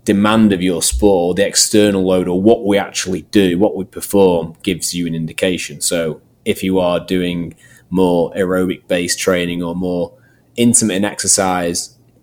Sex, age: male, 20-39